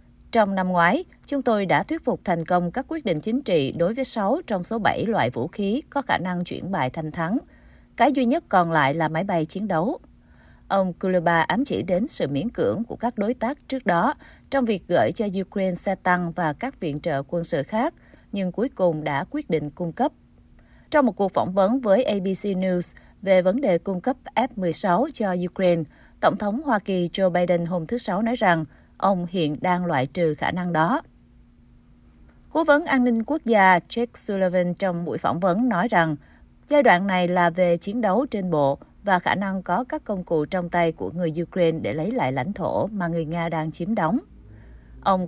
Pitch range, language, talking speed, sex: 175-225 Hz, Vietnamese, 210 wpm, female